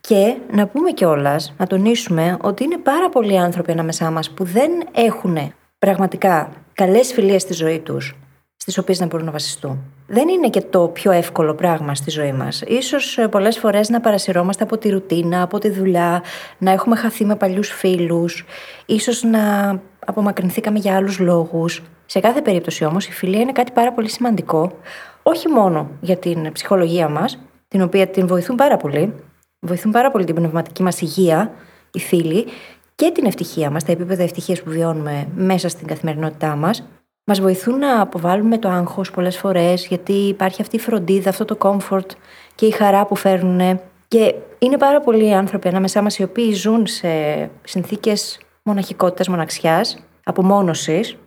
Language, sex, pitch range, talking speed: Greek, female, 175-220 Hz, 165 wpm